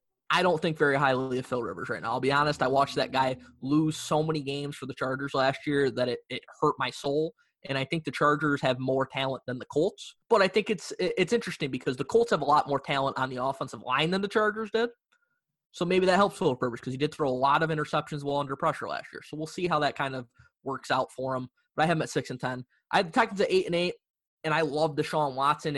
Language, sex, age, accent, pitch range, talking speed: English, male, 20-39, American, 130-155 Hz, 260 wpm